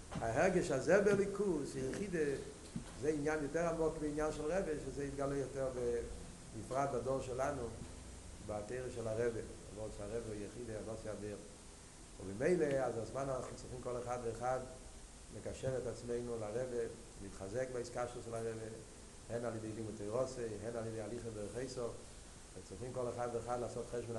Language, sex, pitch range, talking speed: Hebrew, male, 105-130 Hz, 145 wpm